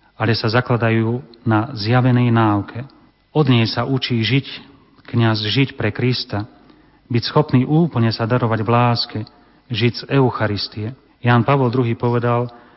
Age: 30-49